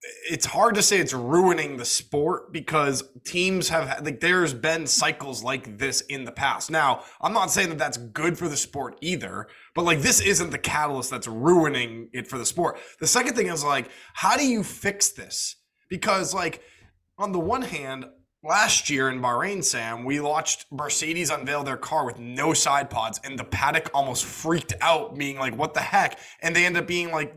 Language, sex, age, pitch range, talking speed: English, male, 20-39, 135-170 Hz, 200 wpm